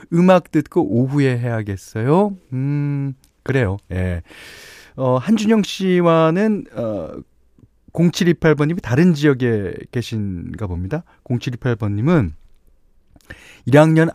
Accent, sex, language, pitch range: native, male, Korean, 100-150 Hz